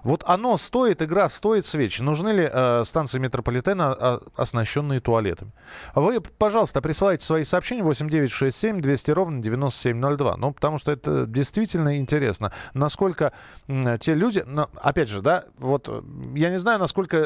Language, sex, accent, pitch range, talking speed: Russian, male, native, 120-165 Hz, 140 wpm